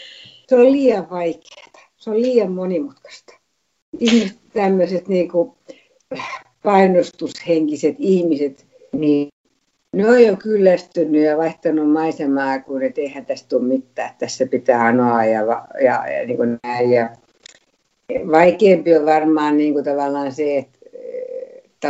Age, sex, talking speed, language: 60-79, female, 110 wpm, Finnish